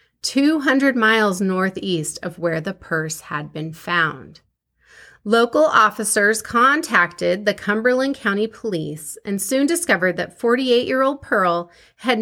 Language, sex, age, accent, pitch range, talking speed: English, female, 30-49, American, 185-255 Hz, 120 wpm